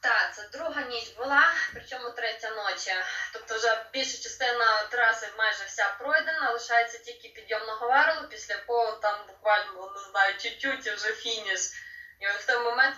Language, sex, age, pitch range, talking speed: Ukrainian, female, 20-39, 210-270 Hz, 155 wpm